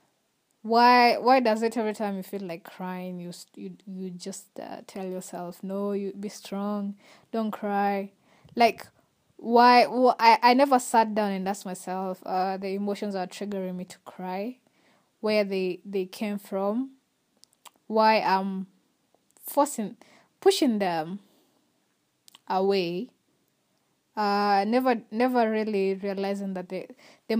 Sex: female